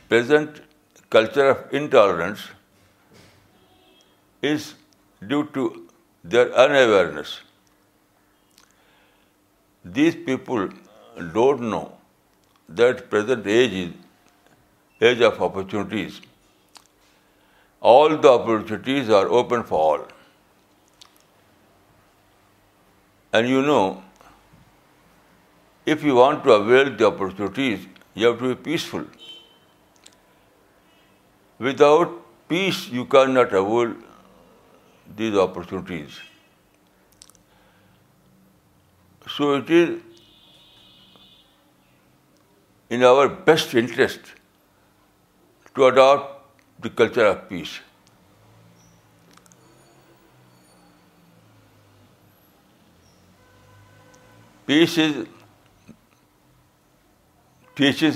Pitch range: 100-140 Hz